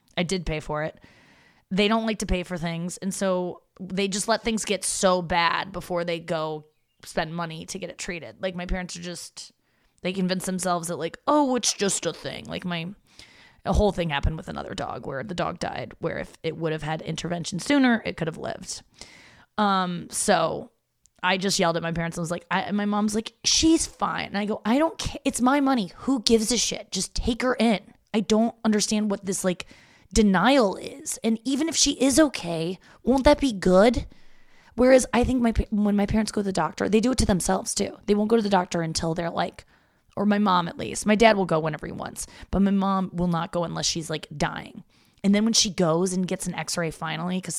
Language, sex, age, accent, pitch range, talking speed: English, female, 20-39, American, 170-220 Hz, 230 wpm